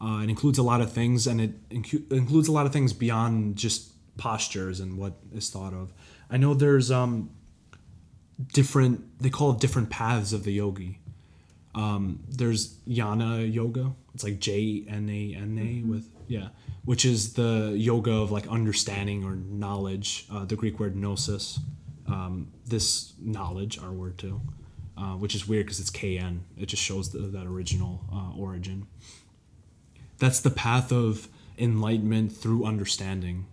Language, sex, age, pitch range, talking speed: English, male, 20-39, 100-120 Hz, 150 wpm